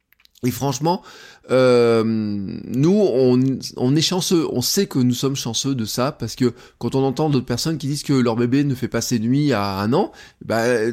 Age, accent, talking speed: 20-39, French, 205 wpm